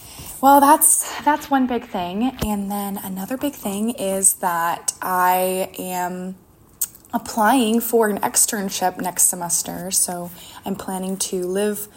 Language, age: English, 20-39